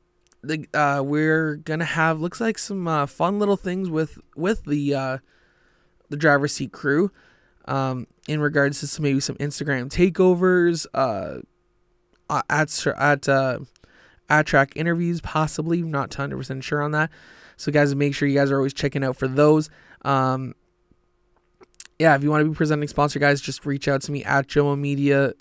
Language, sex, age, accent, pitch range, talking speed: English, male, 20-39, American, 140-155 Hz, 170 wpm